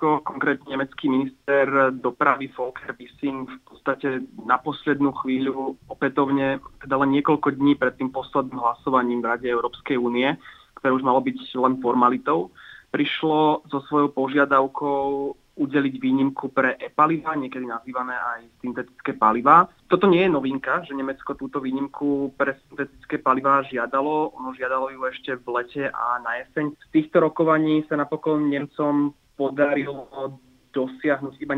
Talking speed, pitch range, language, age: 140 wpm, 130-145 Hz, Slovak, 20-39